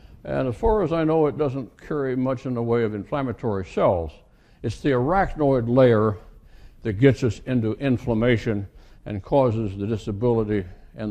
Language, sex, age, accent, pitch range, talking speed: English, male, 60-79, American, 115-170 Hz, 160 wpm